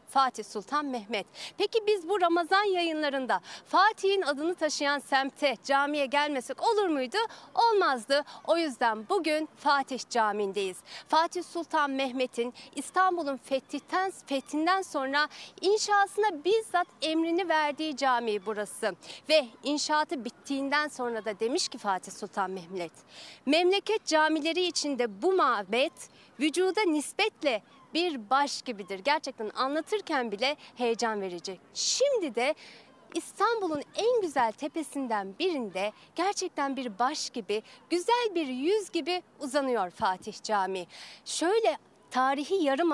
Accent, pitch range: native, 245-345 Hz